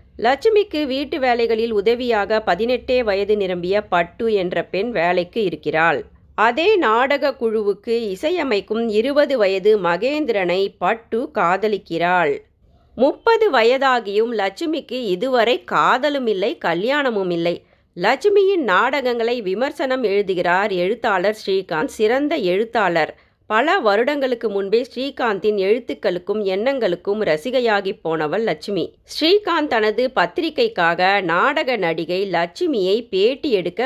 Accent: native